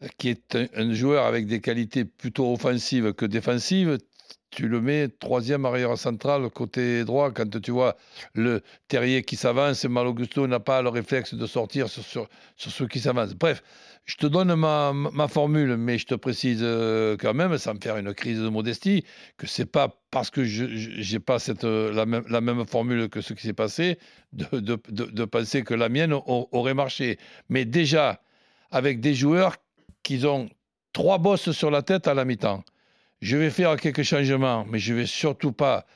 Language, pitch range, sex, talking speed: French, 120-150 Hz, male, 200 wpm